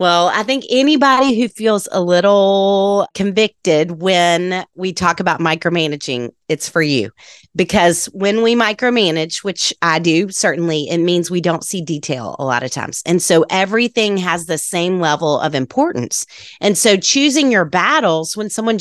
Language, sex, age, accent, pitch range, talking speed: English, female, 30-49, American, 160-210 Hz, 165 wpm